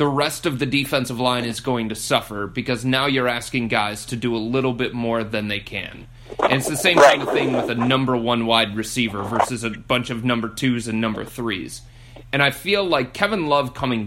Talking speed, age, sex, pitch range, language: 225 wpm, 30-49, male, 115-130 Hz, English